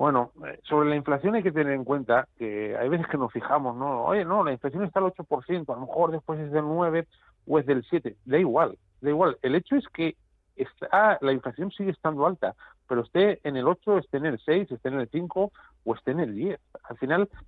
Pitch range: 115-150 Hz